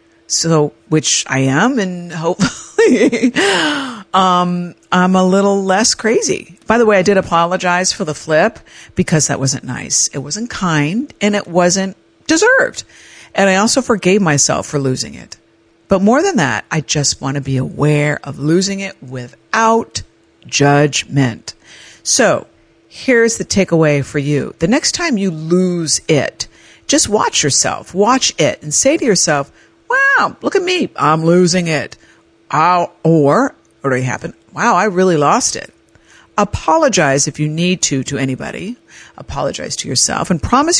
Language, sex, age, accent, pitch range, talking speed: English, female, 50-69, American, 145-205 Hz, 155 wpm